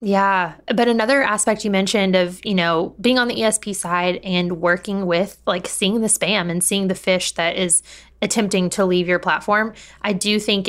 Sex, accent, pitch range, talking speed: female, American, 175-215 Hz, 195 wpm